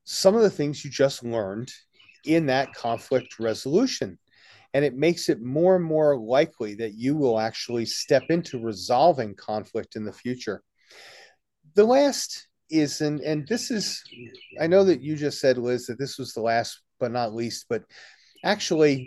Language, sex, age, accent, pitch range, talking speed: English, male, 40-59, American, 120-170 Hz, 170 wpm